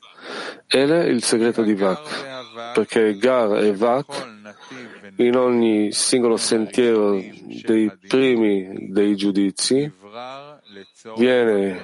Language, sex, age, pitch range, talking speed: Italian, male, 40-59, 105-125 Hz, 95 wpm